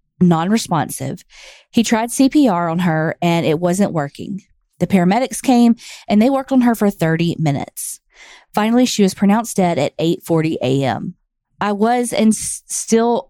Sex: female